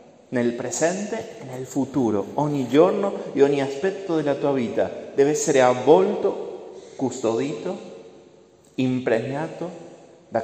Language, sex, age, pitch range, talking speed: Italian, male, 30-49, 110-160 Hz, 110 wpm